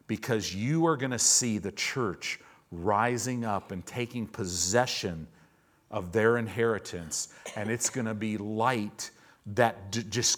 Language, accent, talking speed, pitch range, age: English, American, 145 wpm, 105-135 Hz, 50-69